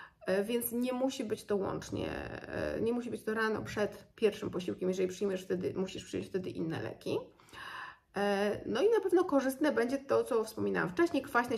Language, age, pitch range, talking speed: Polish, 30-49, 200-260 Hz, 170 wpm